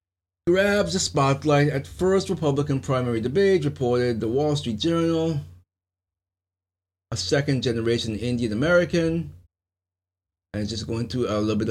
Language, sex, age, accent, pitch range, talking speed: English, male, 30-49, American, 90-135 Hz, 130 wpm